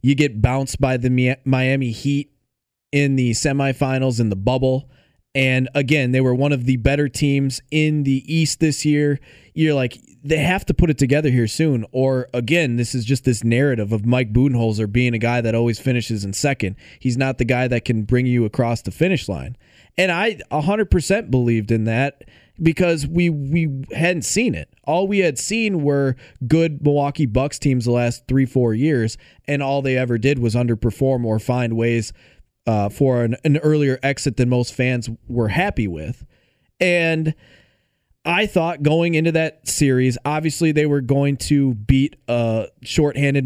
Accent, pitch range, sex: American, 120-145 Hz, male